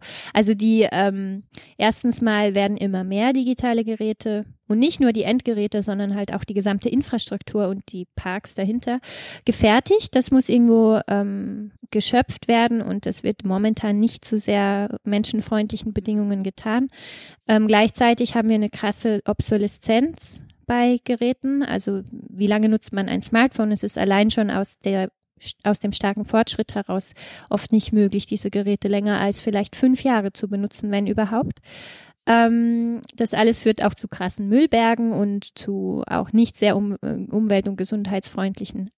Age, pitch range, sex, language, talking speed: 20-39, 205-235 Hz, female, German, 150 wpm